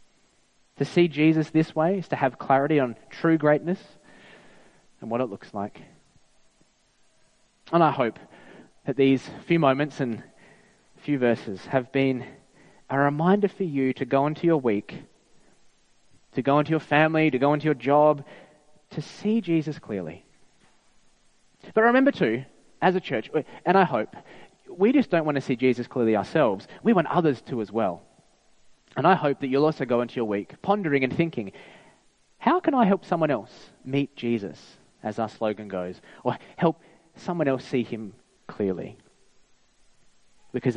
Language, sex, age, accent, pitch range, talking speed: English, male, 20-39, Australian, 130-195 Hz, 160 wpm